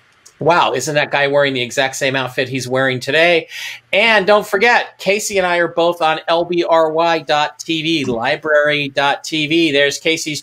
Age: 40-59